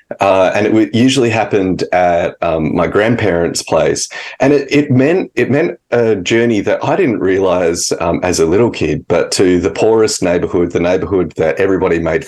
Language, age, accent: English, 30-49, Australian